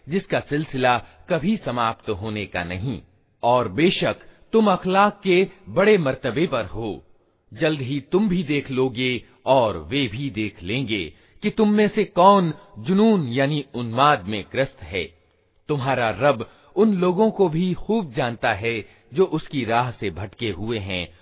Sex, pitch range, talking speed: male, 110-180 Hz, 155 wpm